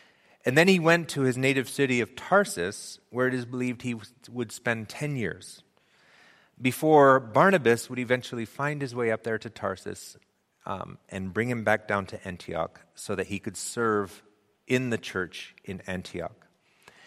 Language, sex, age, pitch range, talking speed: English, male, 30-49, 105-130 Hz, 170 wpm